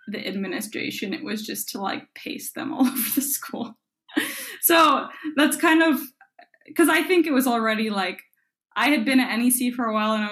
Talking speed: 200 wpm